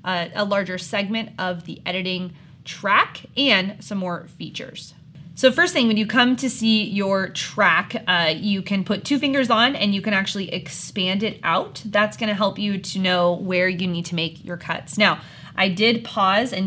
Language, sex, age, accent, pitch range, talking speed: English, female, 20-39, American, 175-210 Hz, 200 wpm